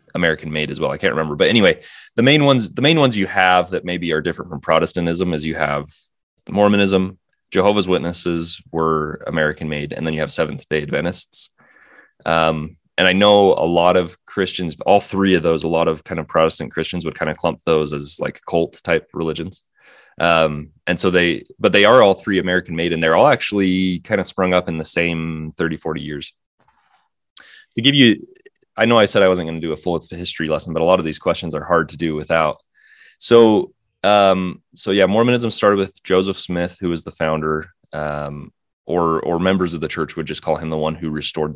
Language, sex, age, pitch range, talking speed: English, male, 20-39, 80-100 Hz, 215 wpm